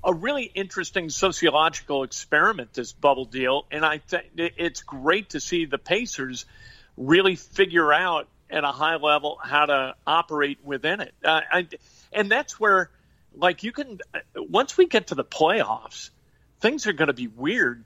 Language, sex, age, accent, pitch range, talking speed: English, male, 50-69, American, 145-180 Hz, 160 wpm